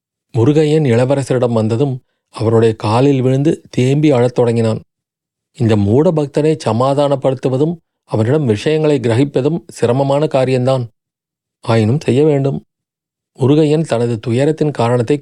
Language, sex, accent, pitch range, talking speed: Tamil, male, native, 115-150 Hz, 100 wpm